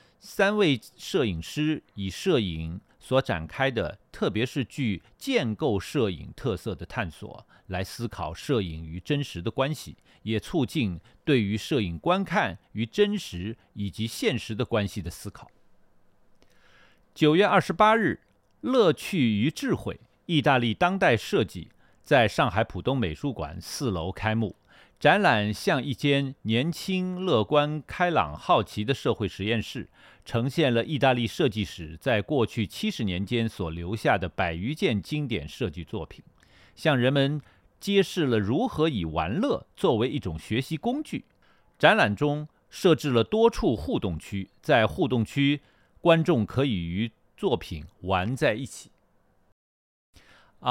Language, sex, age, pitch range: Chinese, male, 50-69, 95-140 Hz